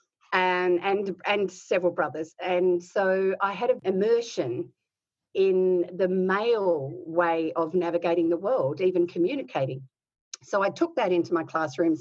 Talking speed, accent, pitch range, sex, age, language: 140 wpm, Australian, 165-195 Hz, female, 50-69, English